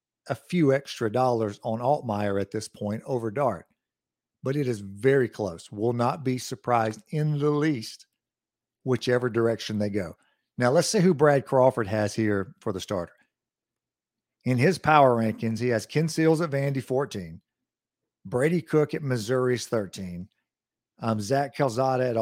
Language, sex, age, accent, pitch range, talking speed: English, male, 50-69, American, 115-140 Hz, 155 wpm